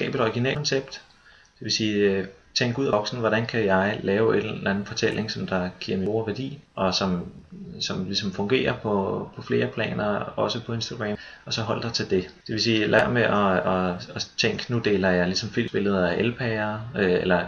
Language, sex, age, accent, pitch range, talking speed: Danish, male, 30-49, native, 95-115 Hz, 210 wpm